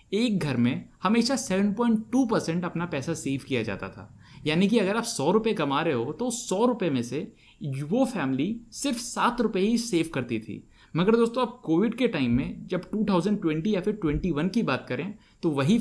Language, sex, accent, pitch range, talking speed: Hindi, male, native, 135-210 Hz, 195 wpm